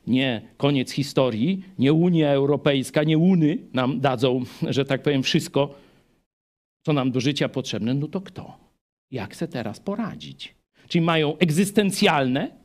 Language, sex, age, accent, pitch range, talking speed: Polish, male, 50-69, native, 140-210 Hz, 140 wpm